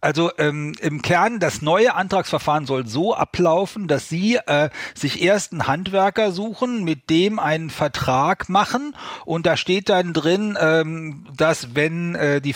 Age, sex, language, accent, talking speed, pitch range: 40-59, male, German, German, 160 wpm, 135-175 Hz